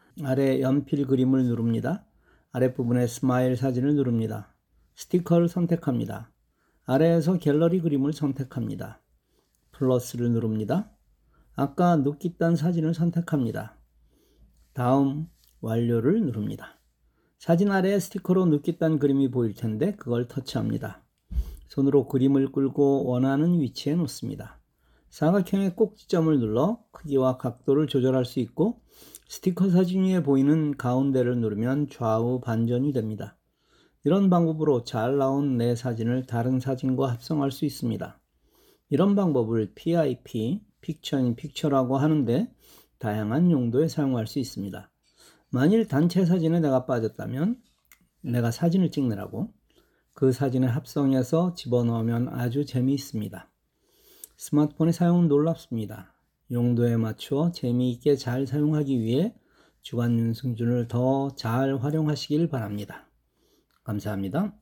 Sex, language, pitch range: male, Korean, 120-160 Hz